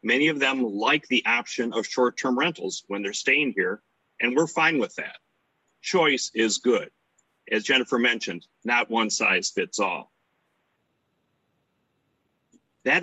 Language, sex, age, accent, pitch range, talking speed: English, male, 40-59, American, 105-135 Hz, 140 wpm